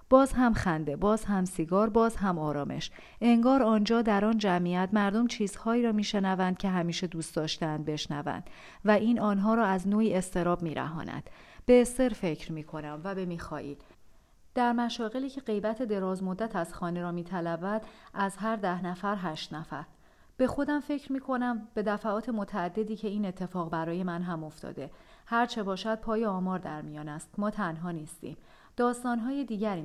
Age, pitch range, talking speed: 40-59, 175-230 Hz, 165 wpm